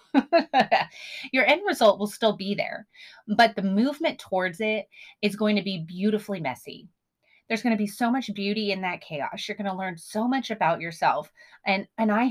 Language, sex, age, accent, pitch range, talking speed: English, female, 30-49, American, 175-225 Hz, 190 wpm